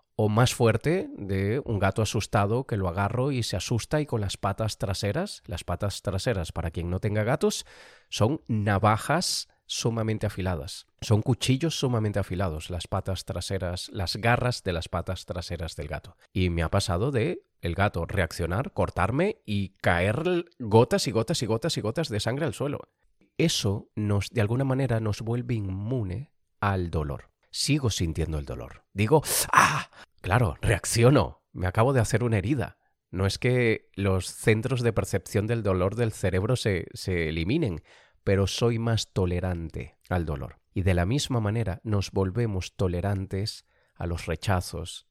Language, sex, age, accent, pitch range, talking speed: Spanish, male, 30-49, Spanish, 90-120 Hz, 160 wpm